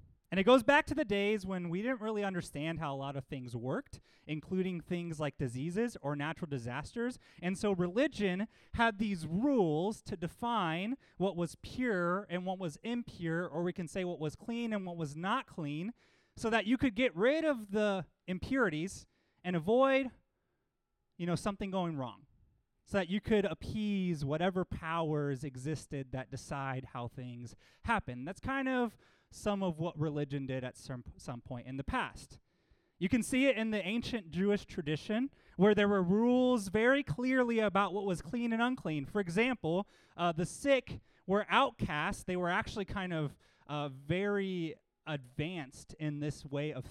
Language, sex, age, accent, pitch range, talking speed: English, male, 30-49, American, 150-220 Hz, 175 wpm